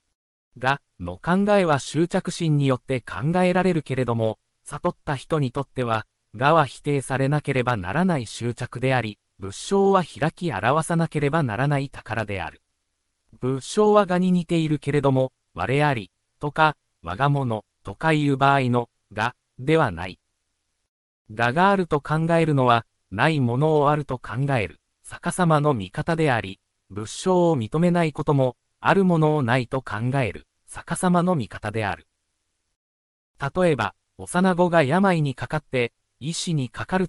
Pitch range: 110-160 Hz